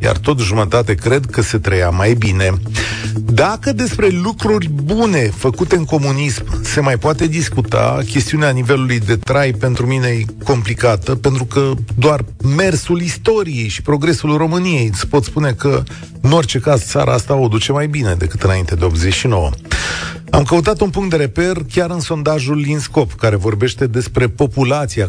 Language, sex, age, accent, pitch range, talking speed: Romanian, male, 40-59, native, 105-145 Hz, 160 wpm